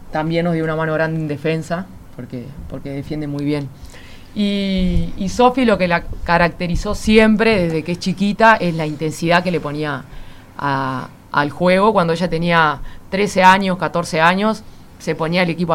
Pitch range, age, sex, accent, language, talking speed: 150-180 Hz, 20-39, female, Argentinian, Spanish, 170 wpm